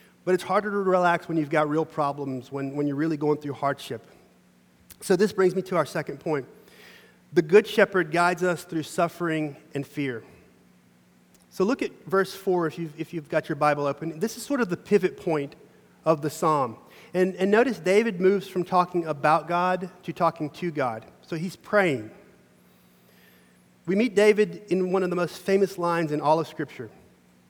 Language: English